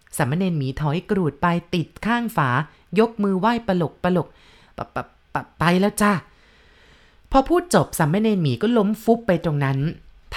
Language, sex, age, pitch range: Thai, female, 20-39, 150-200 Hz